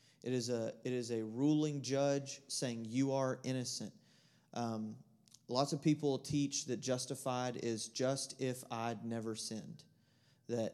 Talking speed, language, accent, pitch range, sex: 145 wpm, English, American, 120-150 Hz, male